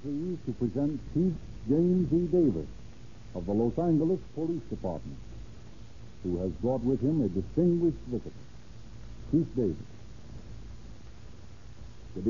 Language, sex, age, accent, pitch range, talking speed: English, male, 60-79, American, 105-125 Hz, 115 wpm